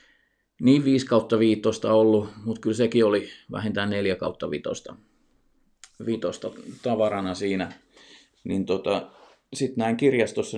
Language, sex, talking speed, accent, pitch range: Finnish, male, 115 wpm, native, 100-130 Hz